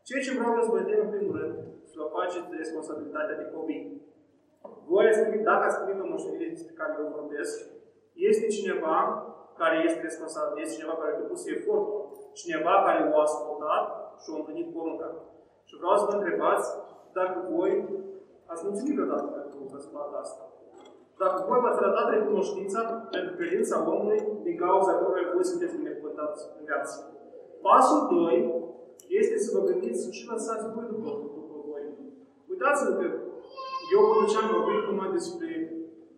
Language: Romanian